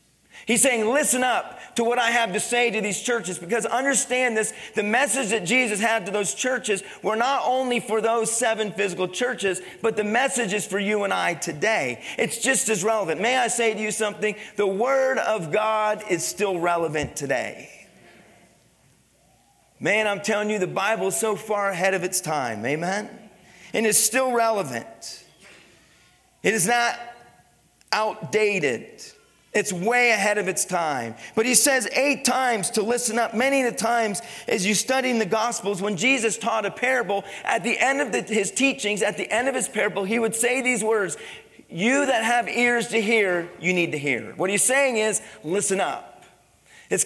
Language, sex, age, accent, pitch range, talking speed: English, male, 40-59, American, 195-235 Hz, 185 wpm